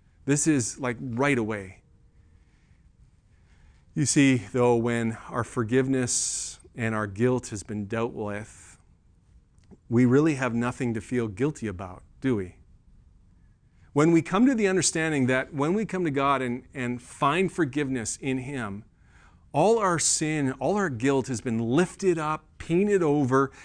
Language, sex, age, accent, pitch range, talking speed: English, male, 40-59, American, 105-145 Hz, 145 wpm